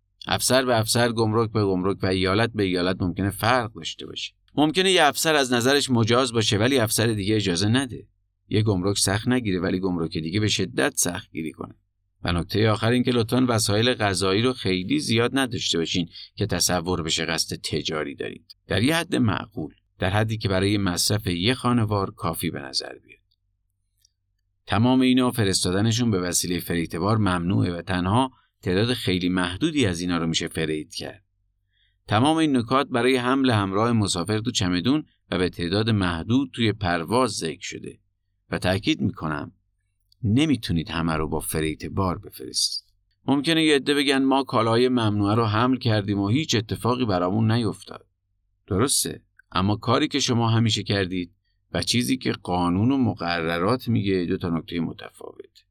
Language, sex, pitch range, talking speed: Persian, male, 90-120 Hz, 155 wpm